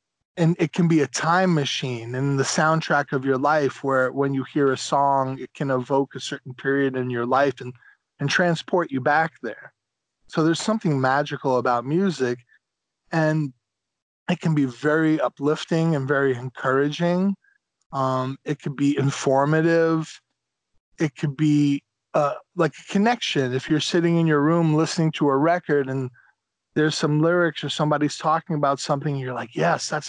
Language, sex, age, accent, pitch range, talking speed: English, male, 20-39, American, 135-160 Hz, 170 wpm